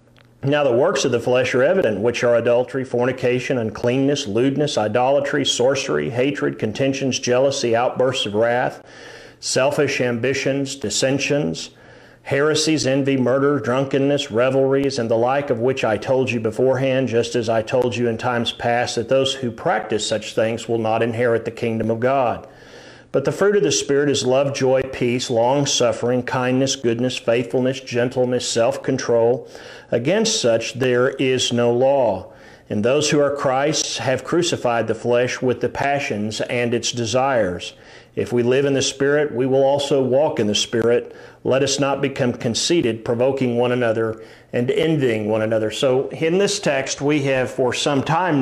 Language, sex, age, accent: English, male, 50-69, American